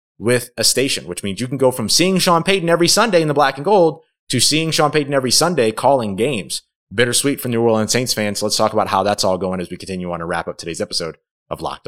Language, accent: English, American